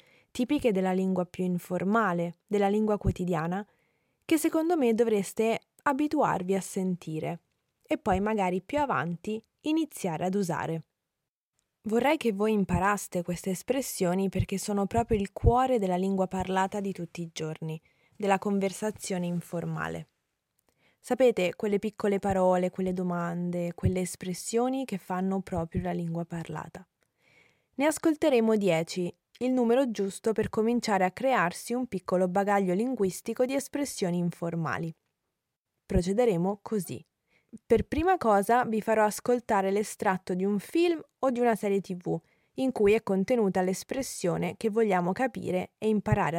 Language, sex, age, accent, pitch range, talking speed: Italian, female, 20-39, native, 180-230 Hz, 130 wpm